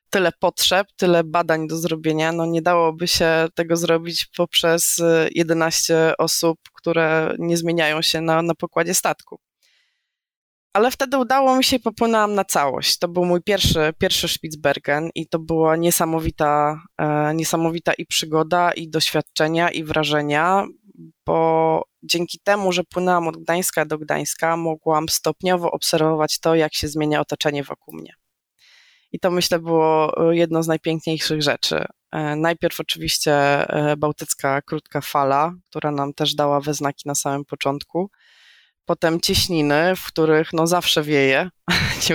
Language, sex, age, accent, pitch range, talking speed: Polish, female, 20-39, native, 150-170 Hz, 140 wpm